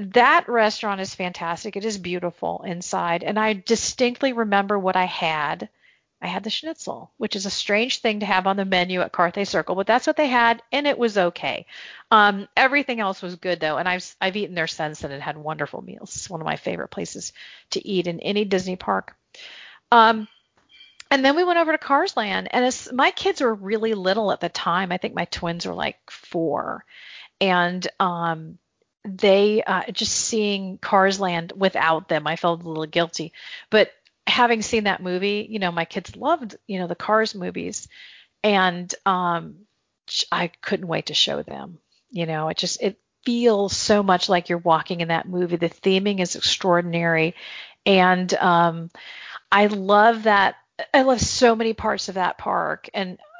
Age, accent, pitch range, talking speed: 40-59, American, 175-220 Hz, 185 wpm